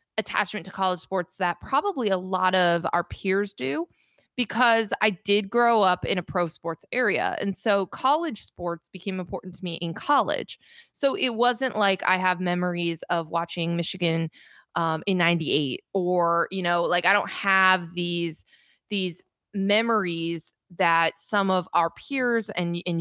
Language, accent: English, American